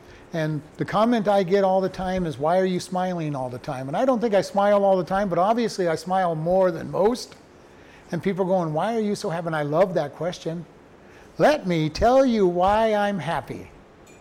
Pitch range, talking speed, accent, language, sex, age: 155-210 Hz, 225 wpm, American, English, male, 60-79